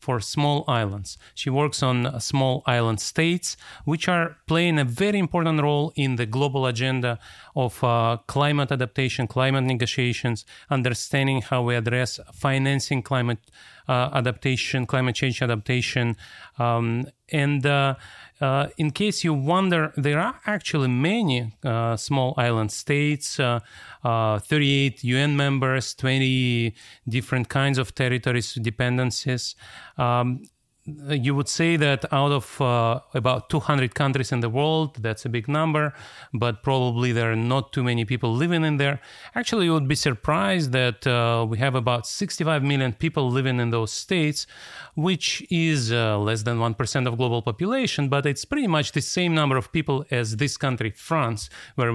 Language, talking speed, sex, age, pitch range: English, 155 wpm, male, 30-49, 120-150 Hz